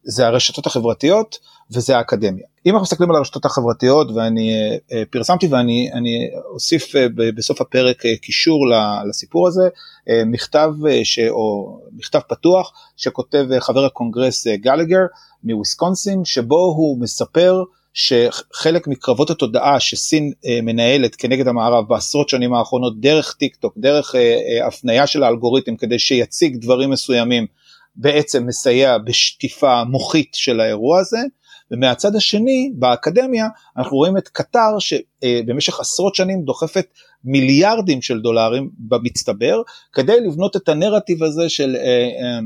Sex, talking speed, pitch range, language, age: male, 115 wpm, 120-180 Hz, Hebrew, 30-49